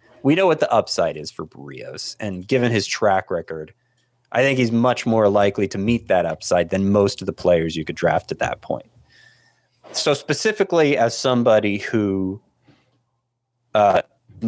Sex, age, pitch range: male, 30-49, 95-120 Hz